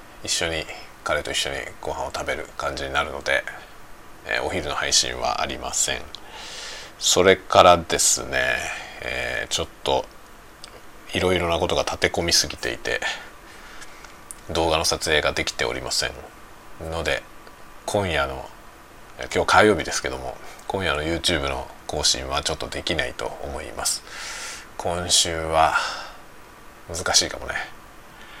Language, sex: Japanese, male